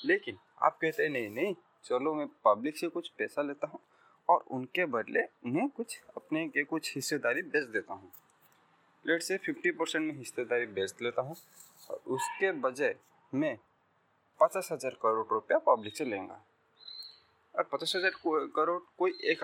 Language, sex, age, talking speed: Hindi, male, 20-39, 160 wpm